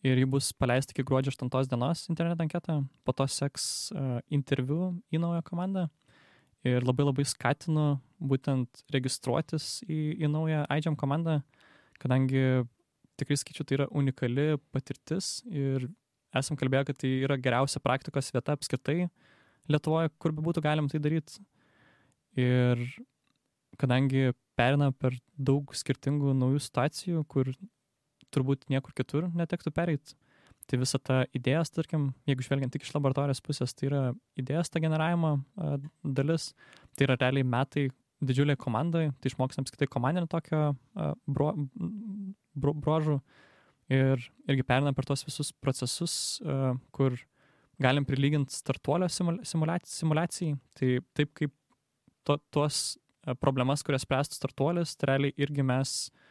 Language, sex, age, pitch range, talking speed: English, male, 20-39, 130-155 Hz, 135 wpm